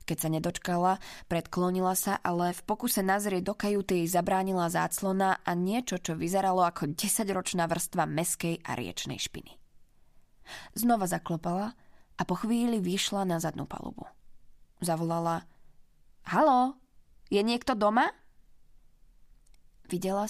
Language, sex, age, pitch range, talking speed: Slovak, female, 20-39, 170-200 Hz, 115 wpm